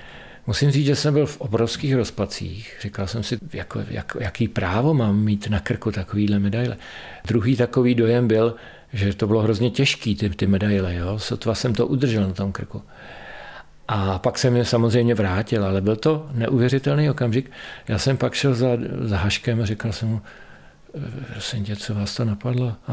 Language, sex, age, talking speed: Czech, male, 50-69, 180 wpm